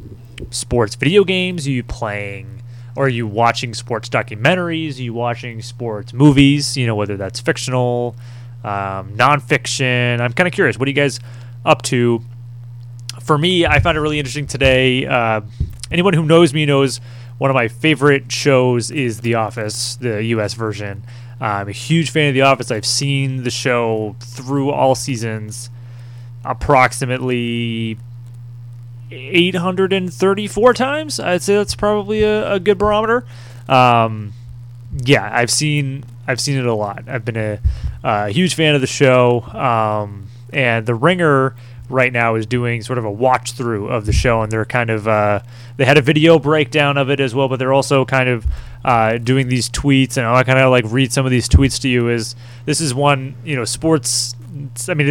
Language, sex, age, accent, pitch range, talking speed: English, male, 20-39, American, 120-140 Hz, 175 wpm